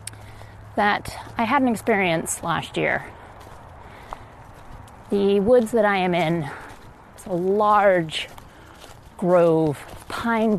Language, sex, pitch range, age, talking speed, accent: English, female, 140-215 Hz, 30-49, 110 wpm, American